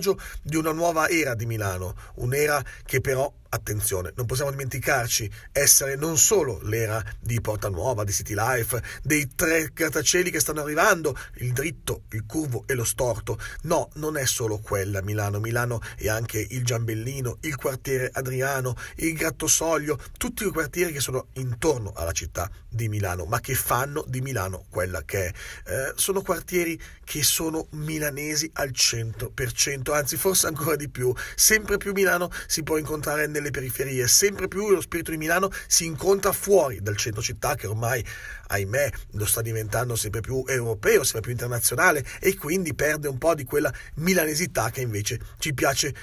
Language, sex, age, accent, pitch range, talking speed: Italian, male, 40-59, native, 115-155 Hz, 165 wpm